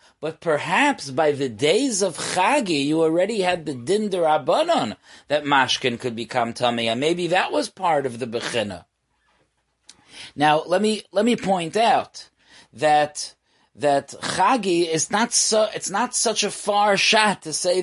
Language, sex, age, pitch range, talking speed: English, male, 30-49, 150-200 Hz, 150 wpm